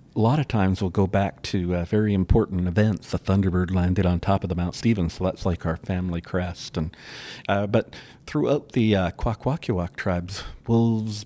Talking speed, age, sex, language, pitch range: 190 wpm, 50-69, male, English, 95-110 Hz